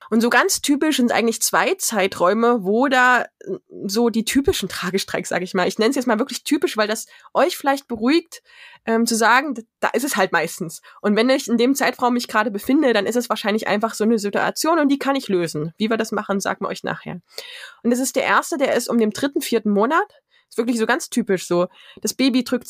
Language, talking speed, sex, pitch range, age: German, 230 wpm, female, 215-265 Hz, 20-39